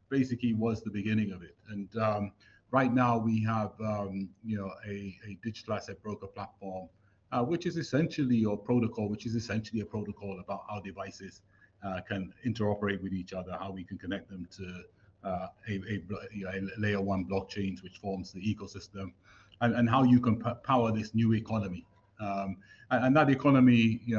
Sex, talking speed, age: male, 190 wpm, 30-49